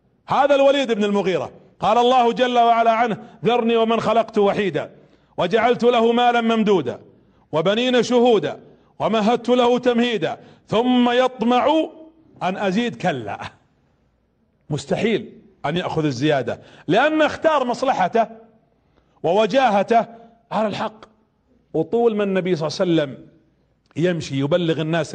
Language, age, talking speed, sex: Arabic, 40-59, 110 wpm, male